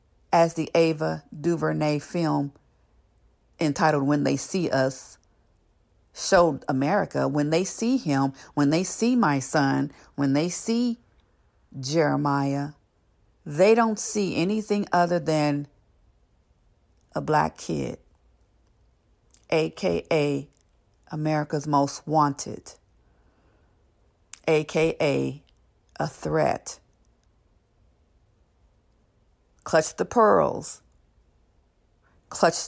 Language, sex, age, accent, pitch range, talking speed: English, female, 50-69, American, 135-175 Hz, 85 wpm